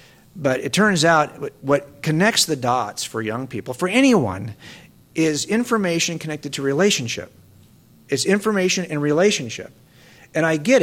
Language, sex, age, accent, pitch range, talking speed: English, male, 50-69, American, 130-190 Hz, 140 wpm